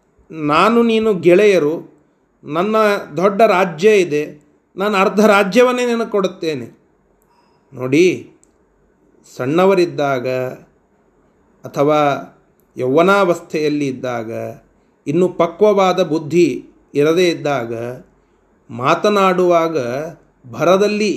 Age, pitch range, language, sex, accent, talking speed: 30-49, 180-230 Hz, Kannada, male, native, 70 wpm